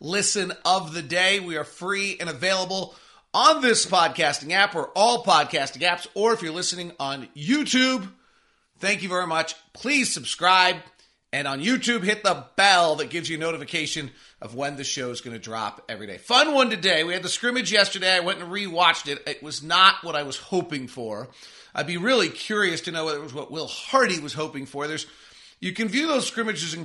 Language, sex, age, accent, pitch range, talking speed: English, male, 40-59, American, 150-195 Hz, 205 wpm